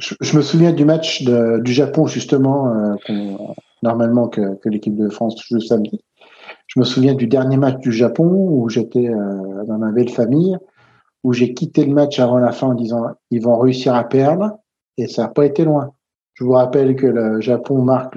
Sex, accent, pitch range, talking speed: male, French, 120-145 Hz, 210 wpm